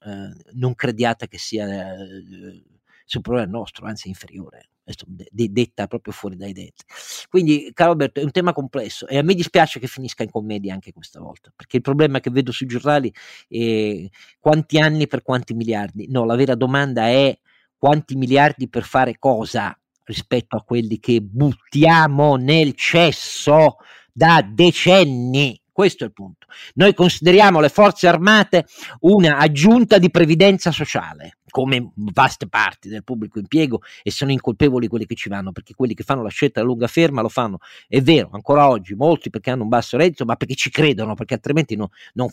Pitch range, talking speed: 115-155 Hz, 180 wpm